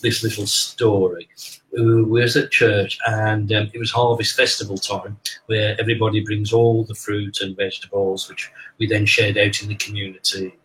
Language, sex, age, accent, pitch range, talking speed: Dutch, male, 40-59, British, 110-135 Hz, 170 wpm